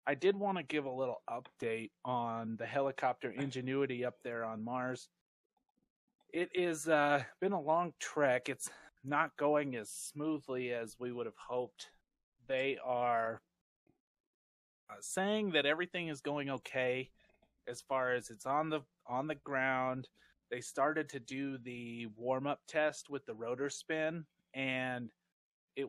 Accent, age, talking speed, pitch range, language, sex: American, 30-49, 150 wpm, 125-155 Hz, English, male